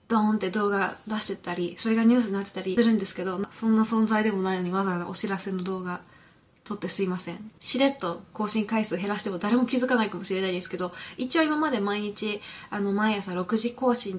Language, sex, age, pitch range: Japanese, female, 20-39, 195-250 Hz